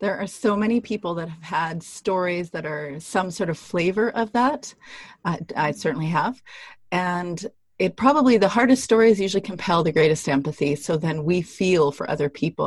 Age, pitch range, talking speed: 30-49, 165-220 Hz, 185 wpm